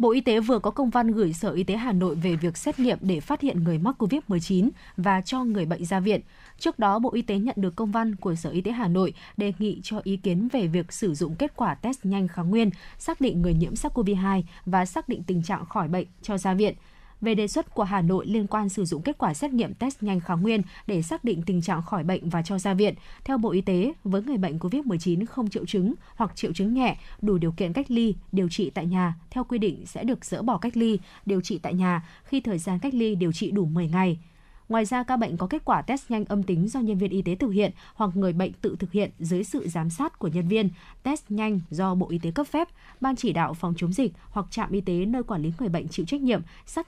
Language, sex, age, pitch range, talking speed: Vietnamese, female, 20-39, 180-230 Hz, 265 wpm